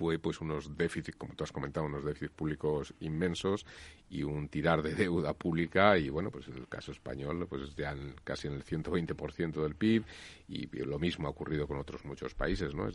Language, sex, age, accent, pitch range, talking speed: Spanish, male, 40-59, Spanish, 75-95 Hz, 215 wpm